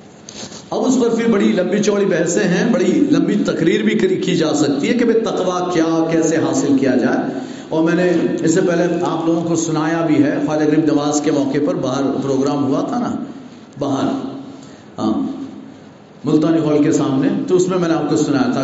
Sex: male